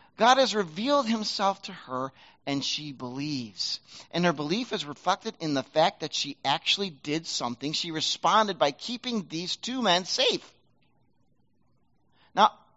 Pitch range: 185-255 Hz